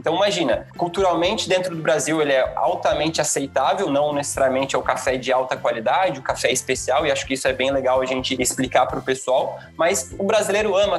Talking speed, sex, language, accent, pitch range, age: 210 wpm, male, Portuguese, Brazilian, 145-185 Hz, 20-39